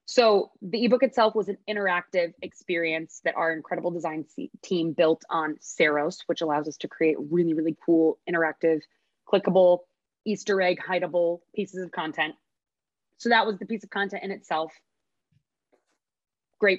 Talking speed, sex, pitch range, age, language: 150 wpm, female, 165-220 Hz, 20-39, English